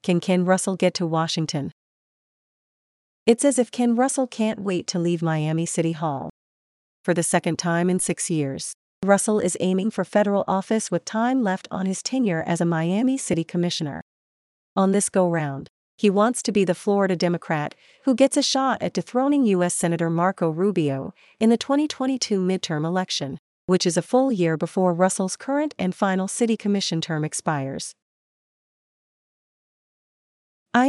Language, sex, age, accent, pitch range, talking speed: English, female, 40-59, American, 170-215 Hz, 160 wpm